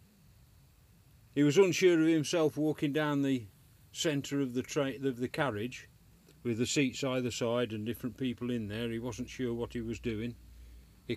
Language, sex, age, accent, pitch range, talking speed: English, male, 40-59, British, 115-140 Hz, 165 wpm